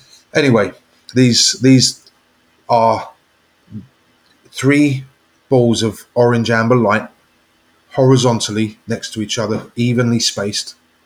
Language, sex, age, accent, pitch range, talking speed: English, male, 30-49, British, 100-125 Hz, 90 wpm